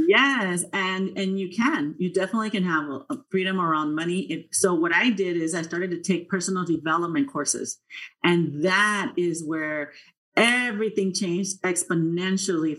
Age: 40-59